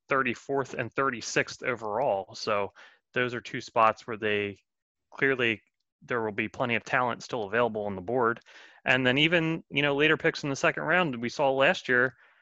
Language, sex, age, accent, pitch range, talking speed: English, male, 30-49, American, 115-135 Hz, 190 wpm